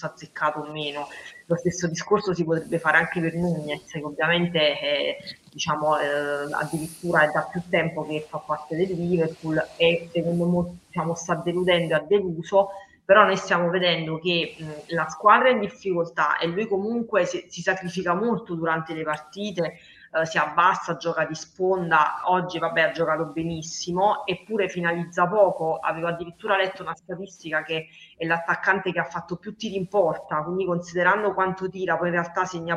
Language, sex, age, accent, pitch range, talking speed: Italian, female, 20-39, native, 160-185 Hz, 170 wpm